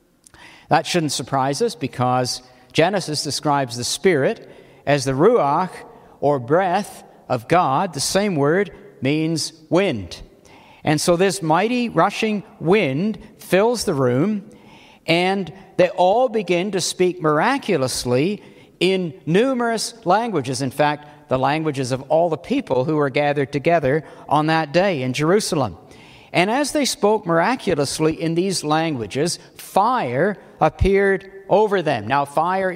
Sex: male